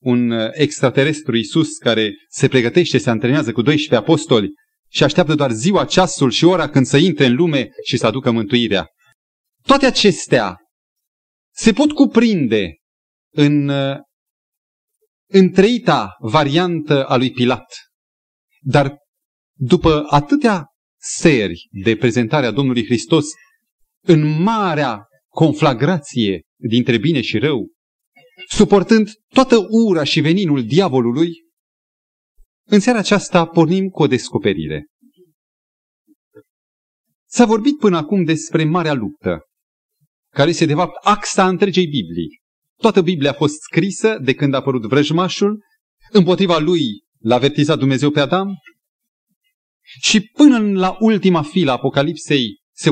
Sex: male